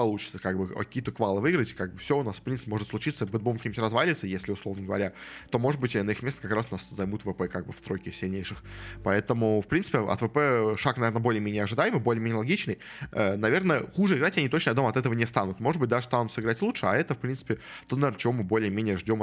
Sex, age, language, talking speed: male, 20-39, Russian, 245 wpm